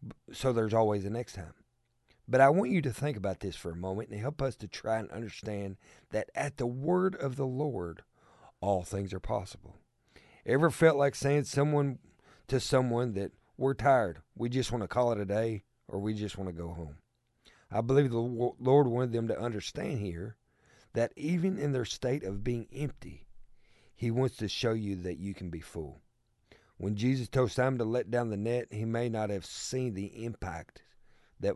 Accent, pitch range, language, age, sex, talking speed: American, 100-125 Hz, English, 50-69, male, 200 wpm